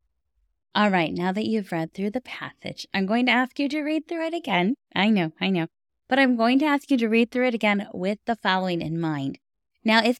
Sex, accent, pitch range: female, American, 175-235 Hz